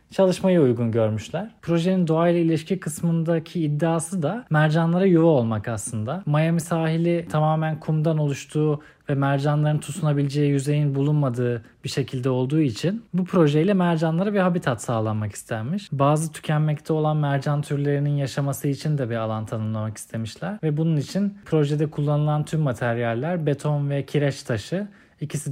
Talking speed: 135 wpm